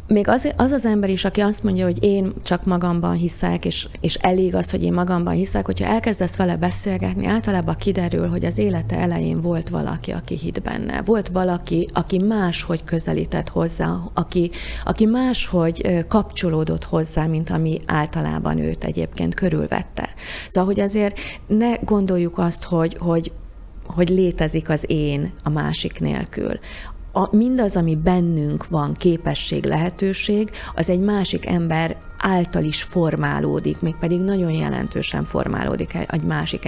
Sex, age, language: female, 30-49, Hungarian